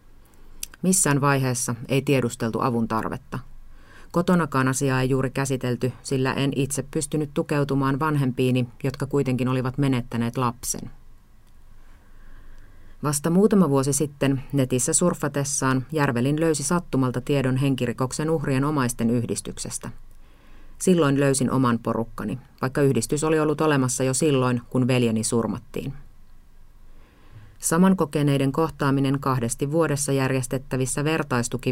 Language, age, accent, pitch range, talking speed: Finnish, 30-49, native, 120-145 Hz, 105 wpm